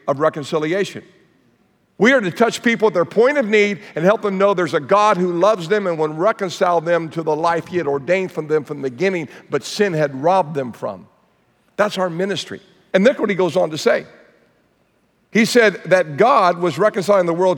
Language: English